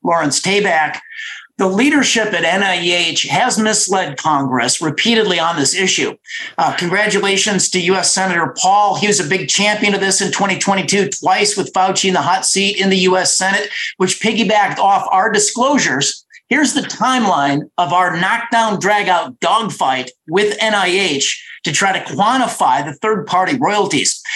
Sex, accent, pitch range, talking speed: male, American, 185-230 Hz, 155 wpm